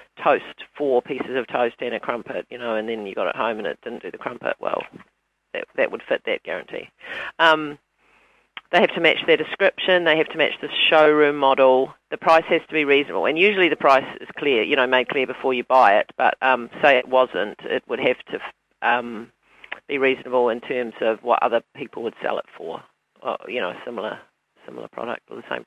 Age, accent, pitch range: 40-59, Australian, 130-165 Hz